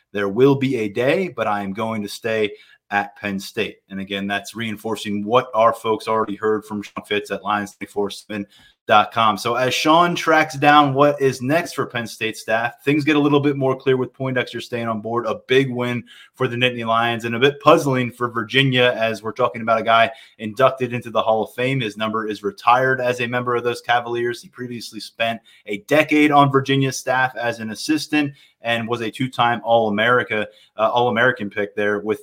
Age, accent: 20-39, American